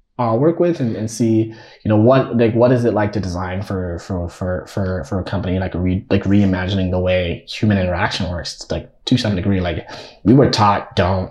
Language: English